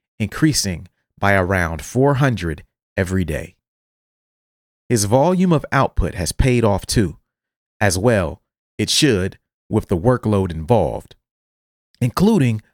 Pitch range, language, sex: 95-130 Hz, English, male